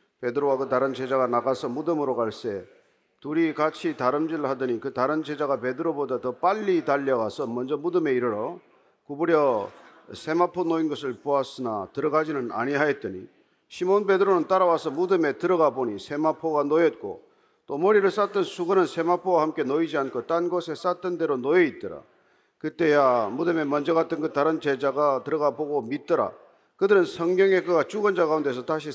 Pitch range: 145-185 Hz